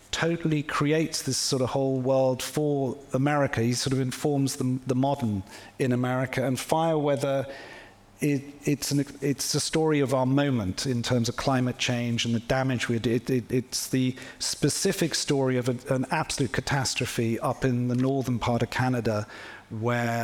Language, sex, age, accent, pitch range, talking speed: English, male, 40-59, British, 120-140 Hz, 175 wpm